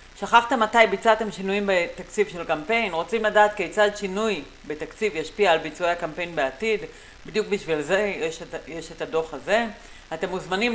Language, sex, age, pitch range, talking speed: Hebrew, female, 40-59, 160-225 Hz, 155 wpm